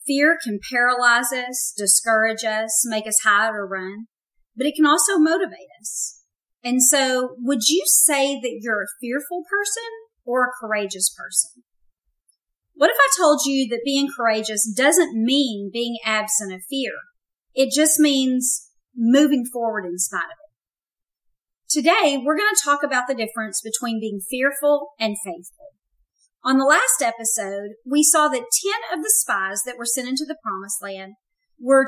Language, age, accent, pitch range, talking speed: English, 40-59, American, 215-295 Hz, 160 wpm